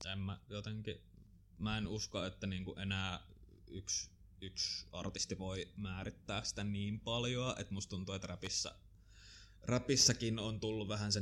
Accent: native